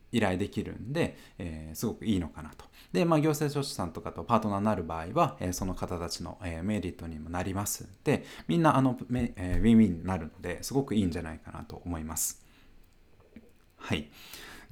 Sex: male